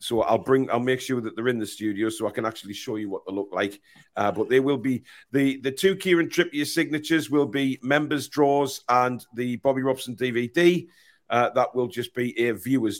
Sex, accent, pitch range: male, British, 125-155 Hz